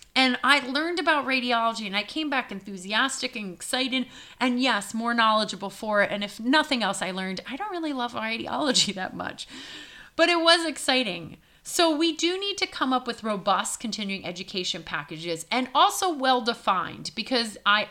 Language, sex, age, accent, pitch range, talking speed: English, female, 30-49, American, 200-270 Hz, 175 wpm